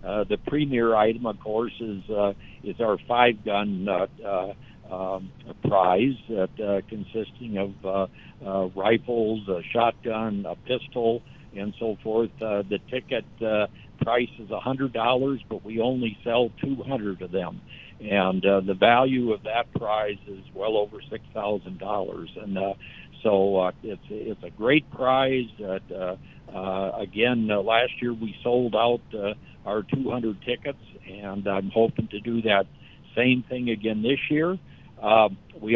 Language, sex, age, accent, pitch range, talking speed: English, male, 60-79, American, 100-125 Hz, 160 wpm